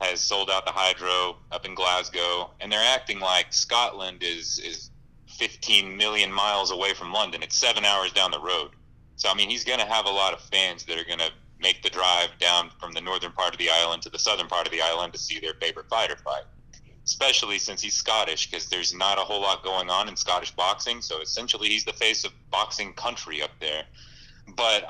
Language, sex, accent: English, male, American